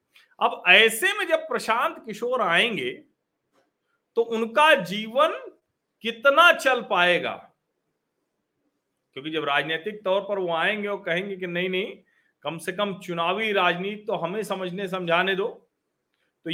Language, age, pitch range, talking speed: Hindi, 40-59, 165-210 Hz, 130 wpm